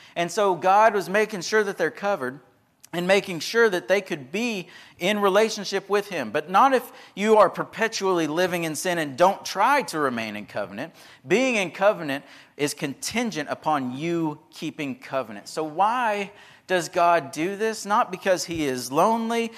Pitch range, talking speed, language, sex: 135-190 Hz, 170 wpm, English, male